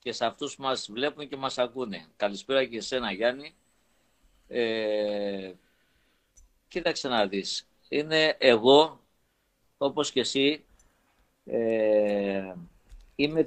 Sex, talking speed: male, 100 wpm